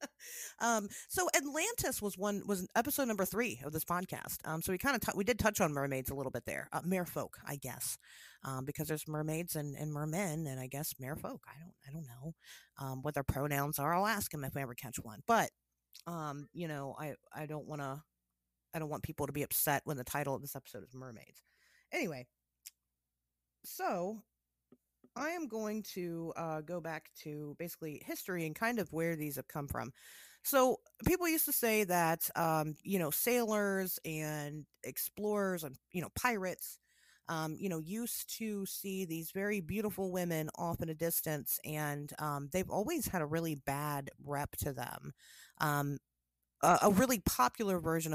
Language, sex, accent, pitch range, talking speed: English, female, American, 145-190 Hz, 190 wpm